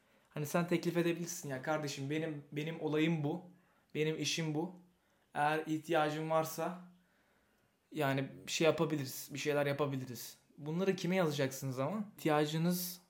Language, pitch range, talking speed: Turkish, 135-160 Hz, 135 wpm